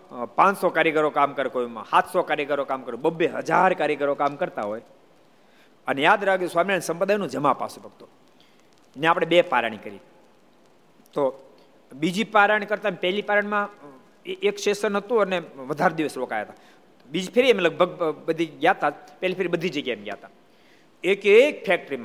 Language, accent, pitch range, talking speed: Gujarati, native, 155-215 Hz, 35 wpm